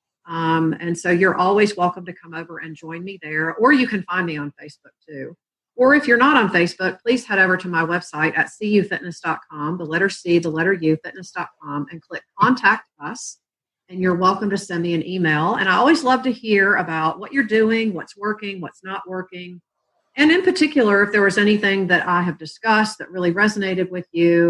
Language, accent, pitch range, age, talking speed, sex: English, American, 160-205 Hz, 40-59, 210 wpm, female